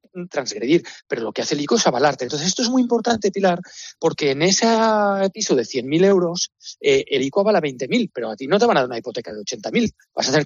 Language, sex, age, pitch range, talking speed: Spanish, male, 40-59, 150-210 Hz, 240 wpm